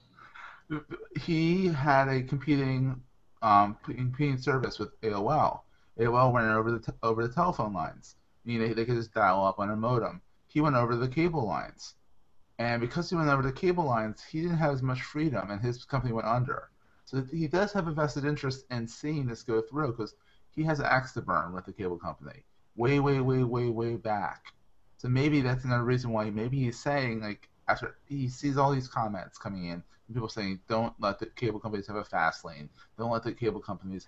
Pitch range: 105-135 Hz